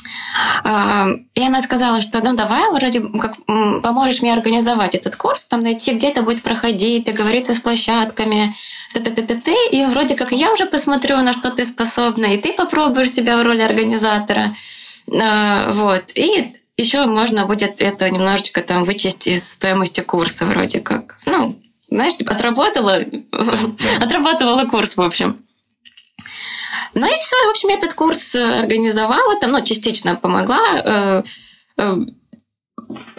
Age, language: 20-39, Russian